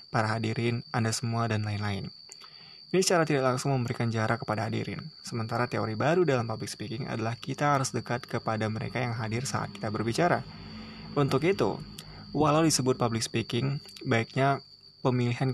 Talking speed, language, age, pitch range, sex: 150 wpm, Indonesian, 20-39, 110-135 Hz, male